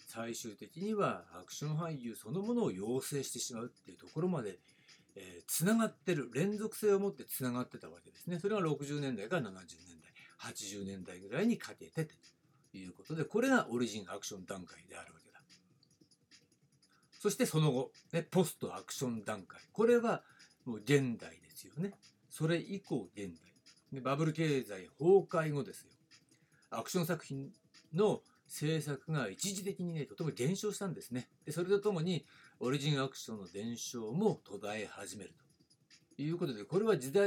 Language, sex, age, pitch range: Japanese, male, 60-79, 130-185 Hz